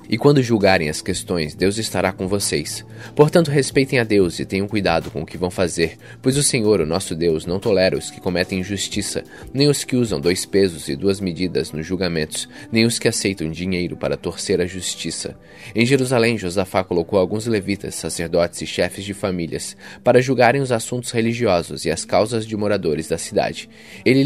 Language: Portuguese